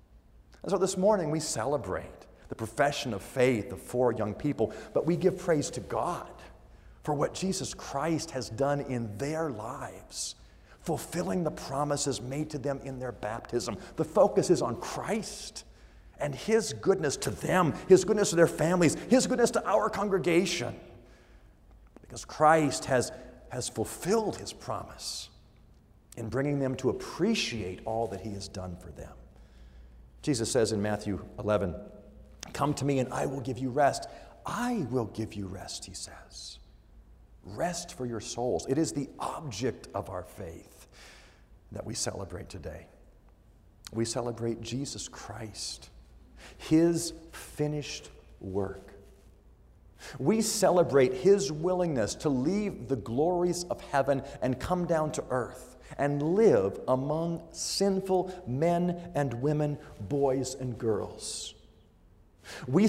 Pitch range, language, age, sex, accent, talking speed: 110-175 Hz, English, 40-59, male, American, 140 wpm